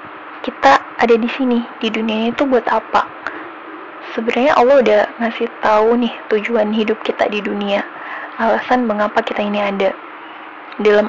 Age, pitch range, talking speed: 20-39, 215-255 Hz, 140 wpm